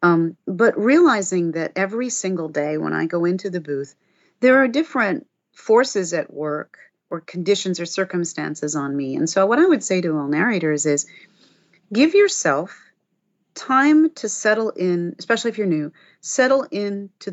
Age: 40-59